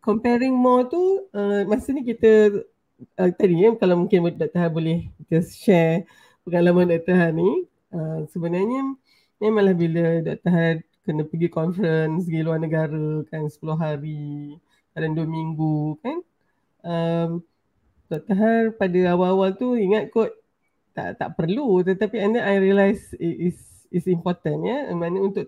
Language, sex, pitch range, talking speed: Malay, female, 160-200 Hz, 155 wpm